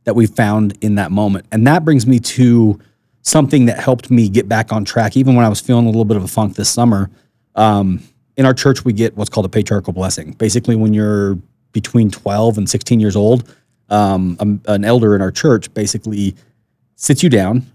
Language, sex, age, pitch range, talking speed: English, male, 30-49, 100-120 Hz, 210 wpm